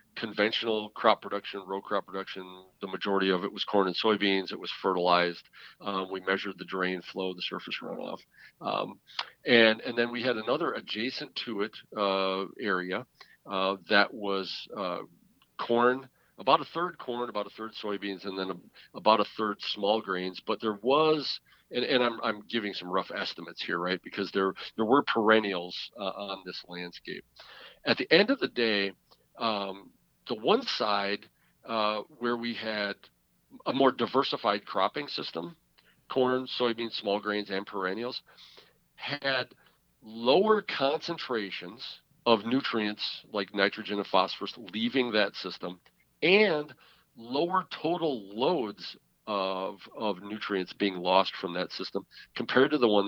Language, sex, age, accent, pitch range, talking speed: English, male, 40-59, American, 95-120 Hz, 150 wpm